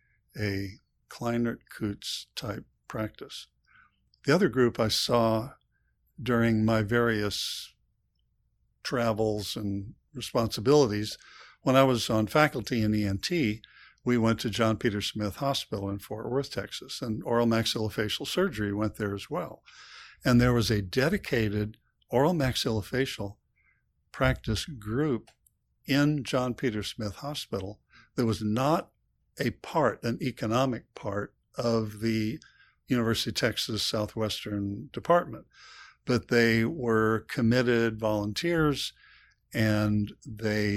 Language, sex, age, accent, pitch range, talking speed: English, male, 60-79, American, 105-125 Hz, 115 wpm